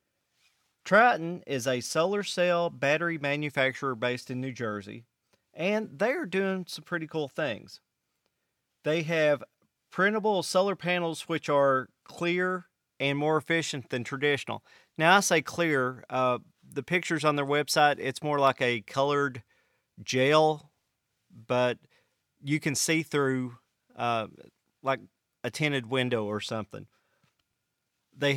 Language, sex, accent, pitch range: English, male, American, 125-150 Hz